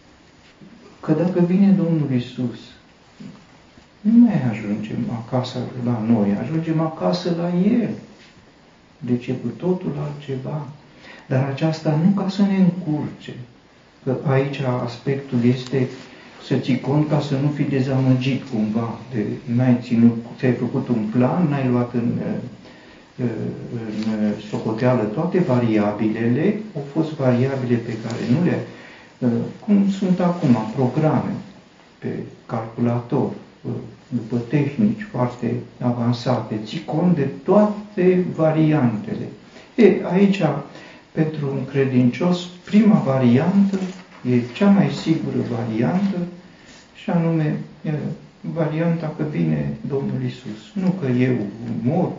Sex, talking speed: male, 115 wpm